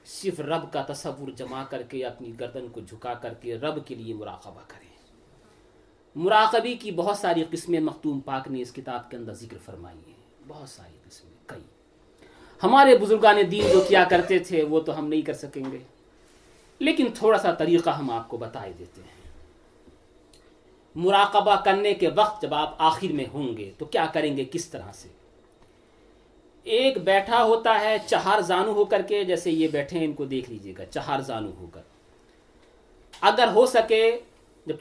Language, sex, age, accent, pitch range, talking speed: English, male, 40-59, Indian, 140-195 Hz, 150 wpm